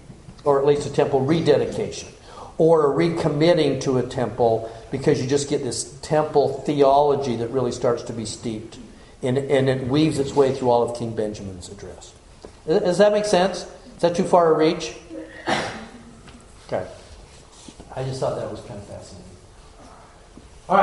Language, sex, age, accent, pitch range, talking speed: English, male, 60-79, American, 130-190 Hz, 160 wpm